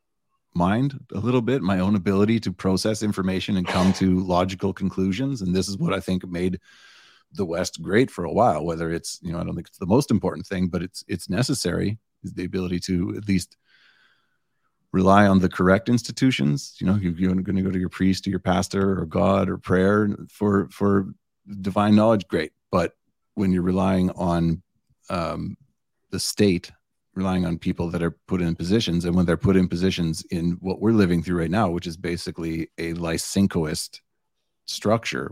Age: 30-49